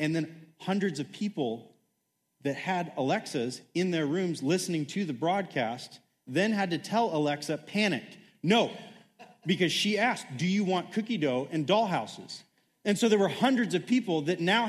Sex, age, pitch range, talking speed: male, 30-49, 135-190 Hz, 170 wpm